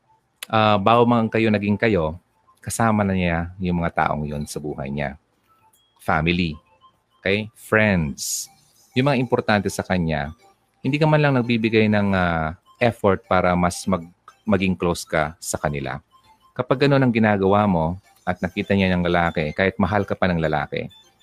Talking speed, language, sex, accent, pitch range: 160 wpm, Filipino, male, native, 85-115 Hz